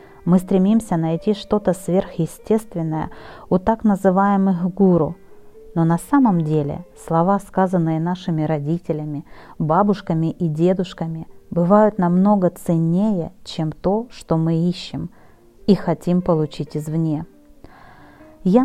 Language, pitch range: Russian, 160-200 Hz